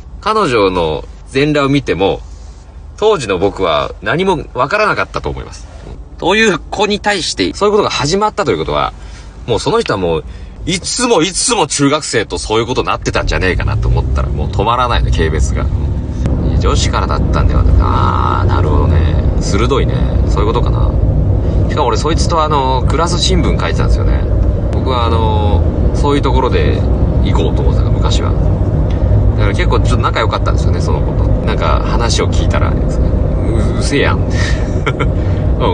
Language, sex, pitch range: Japanese, male, 80-105 Hz